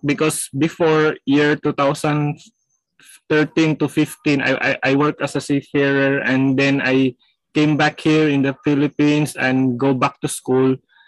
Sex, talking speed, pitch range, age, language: male, 145 wpm, 150-180 Hz, 20-39, Indonesian